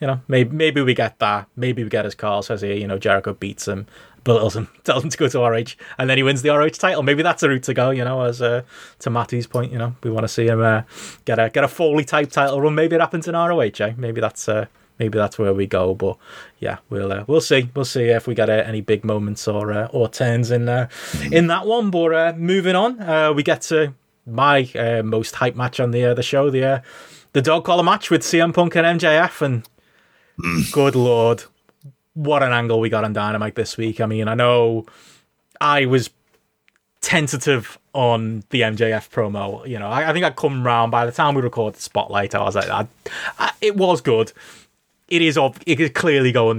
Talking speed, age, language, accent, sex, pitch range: 235 wpm, 20-39, English, British, male, 110-145 Hz